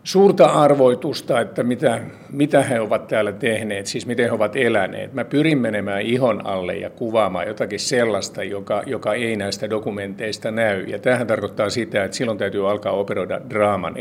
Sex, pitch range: male, 100-130 Hz